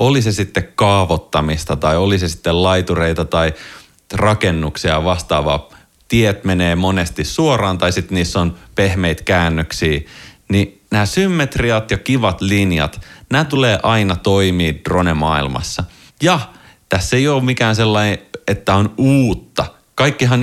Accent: native